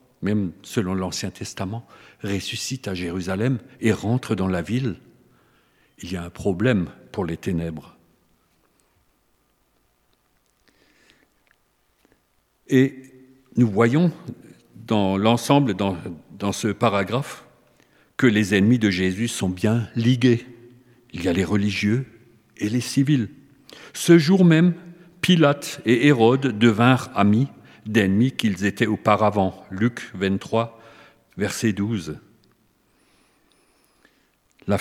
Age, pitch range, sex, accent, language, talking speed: 50-69, 100-130 Hz, male, French, French, 105 wpm